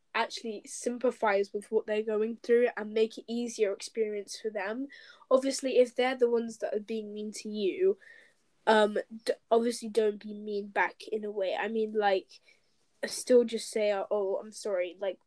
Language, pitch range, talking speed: English, 210-240 Hz, 175 wpm